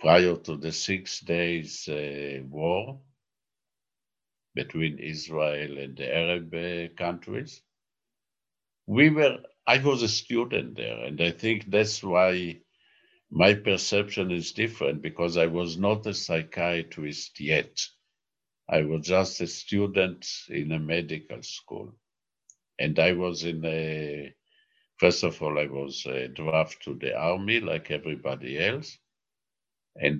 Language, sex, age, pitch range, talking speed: English, male, 60-79, 80-100 Hz, 125 wpm